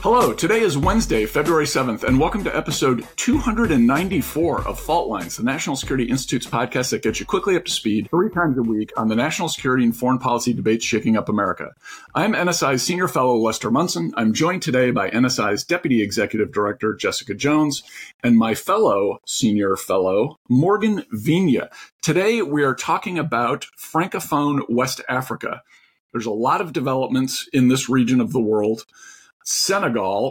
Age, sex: 50-69, male